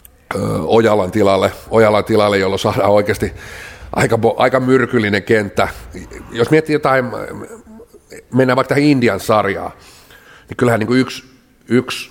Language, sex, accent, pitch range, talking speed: Finnish, male, native, 100-120 Hz, 85 wpm